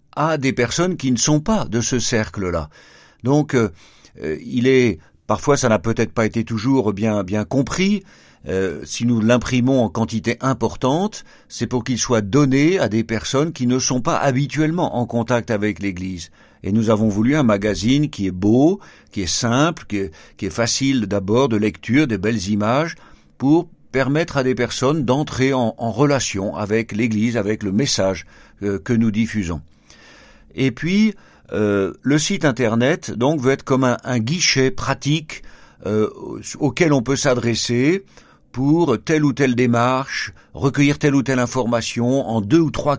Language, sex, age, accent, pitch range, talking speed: French, male, 50-69, French, 105-140 Hz, 170 wpm